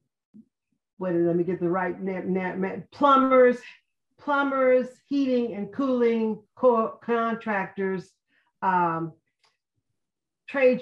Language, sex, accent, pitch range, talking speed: English, female, American, 185-235 Hz, 100 wpm